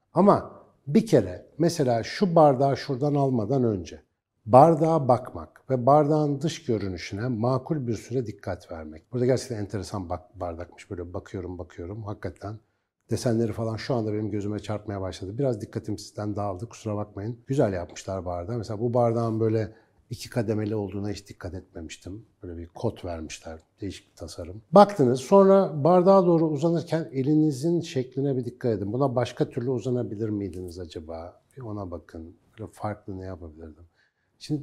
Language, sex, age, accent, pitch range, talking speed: Turkish, male, 60-79, native, 100-140 Hz, 145 wpm